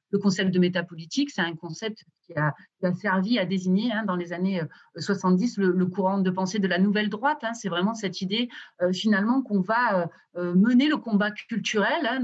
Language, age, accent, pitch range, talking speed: French, 30-49, French, 180-230 Hz, 210 wpm